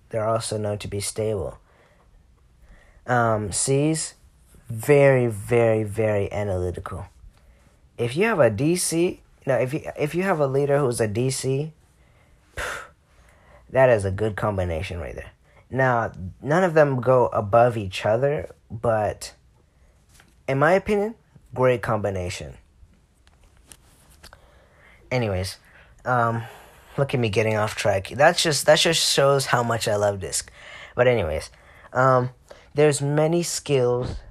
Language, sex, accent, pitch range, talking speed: English, male, American, 100-135 Hz, 130 wpm